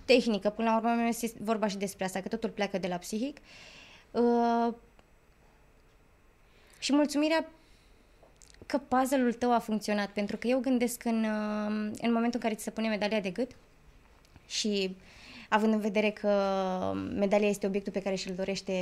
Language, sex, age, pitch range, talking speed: Romanian, female, 20-39, 205-245 Hz, 150 wpm